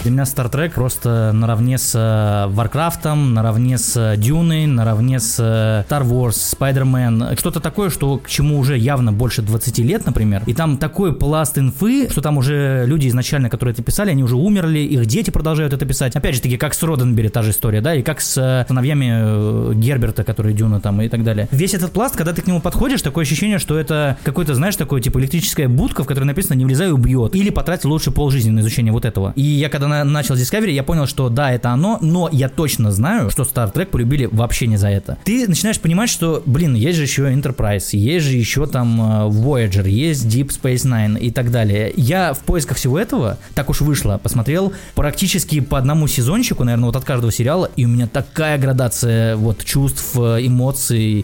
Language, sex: Russian, male